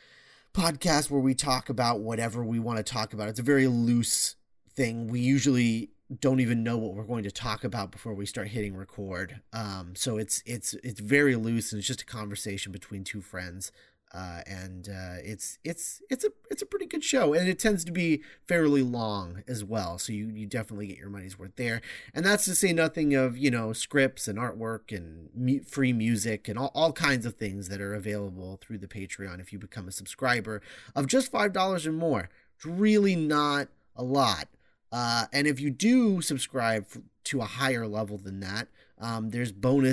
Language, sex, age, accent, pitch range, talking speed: English, male, 30-49, American, 105-135 Hz, 200 wpm